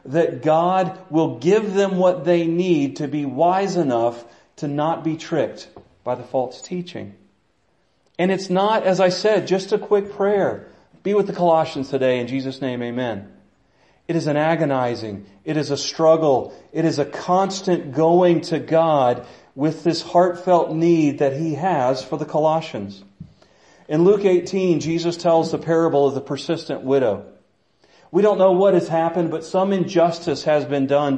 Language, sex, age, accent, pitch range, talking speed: English, male, 40-59, American, 140-180 Hz, 165 wpm